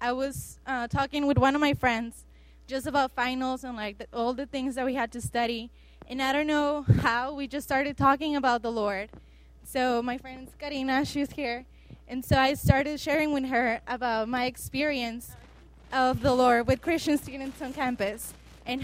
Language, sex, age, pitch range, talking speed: English, female, 20-39, 235-280 Hz, 190 wpm